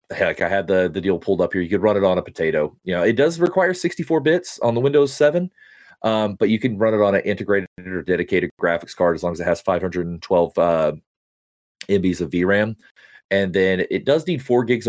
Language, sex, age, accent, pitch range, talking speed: English, male, 30-49, American, 95-130 Hz, 230 wpm